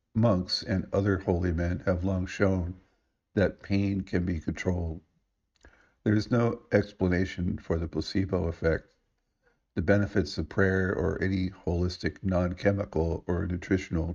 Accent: American